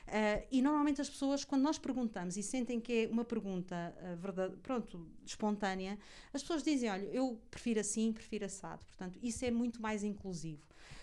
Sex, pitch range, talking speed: female, 185-225 Hz, 180 wpm